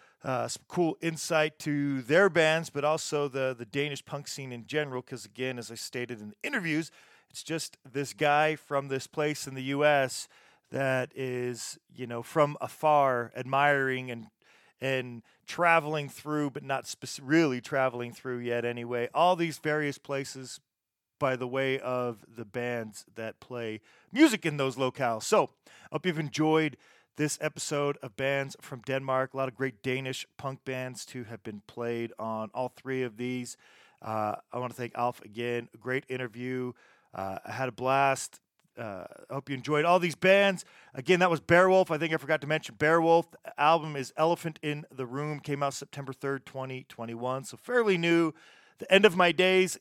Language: English